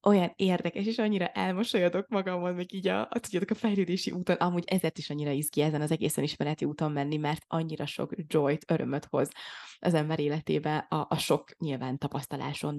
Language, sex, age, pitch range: Hungarian, female, 20-39, 160-195 Hz